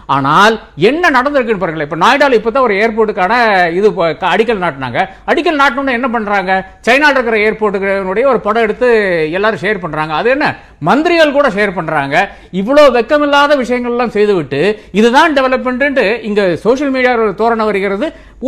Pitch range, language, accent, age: 195-265 Hz, Tamil, native, 50-69